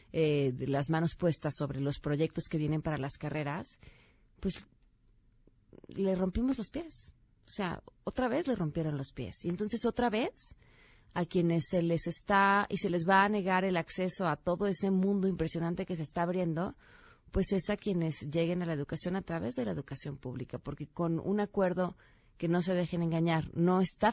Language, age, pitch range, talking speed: Spanish, 30-49, 150-185 Hz, 190 wpm